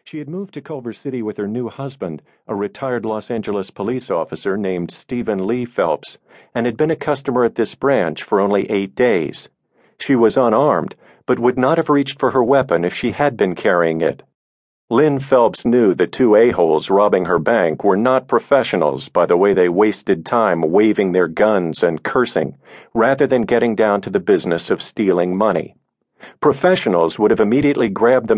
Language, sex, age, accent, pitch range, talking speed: English, male, 50-69, American, 105-140 Hz, 185 wpm